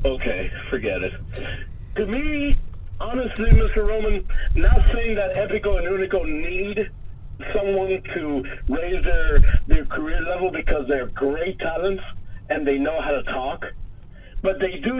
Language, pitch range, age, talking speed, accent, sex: English, 140-220 Hz, 50-69, 140 wpm, American, male